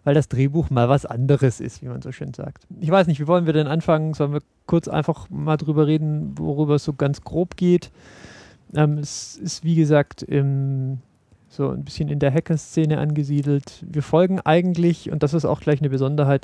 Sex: male